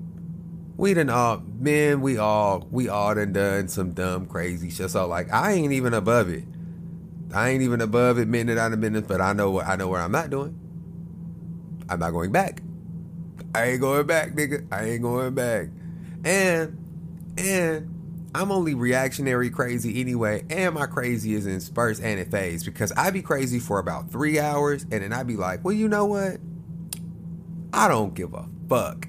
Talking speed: 190 wpm